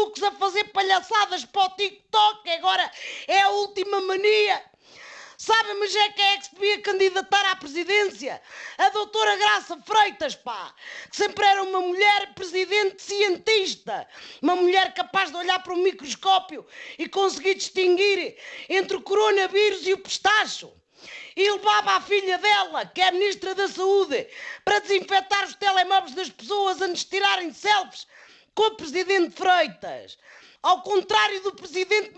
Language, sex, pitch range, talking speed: Portuguese, female, 375-415 Hz, 150 wpm